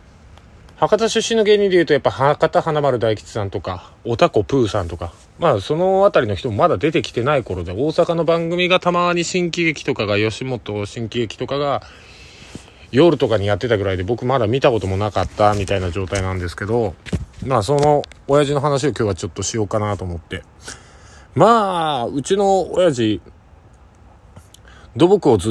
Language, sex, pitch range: Japanese, male, 100-145 Hz